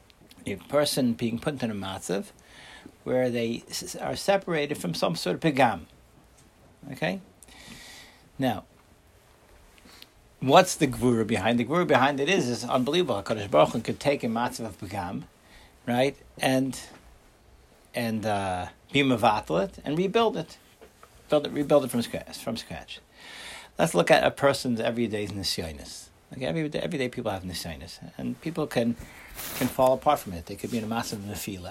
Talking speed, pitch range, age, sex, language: 155 wpm, 115-150 Hz, 60-79, male, English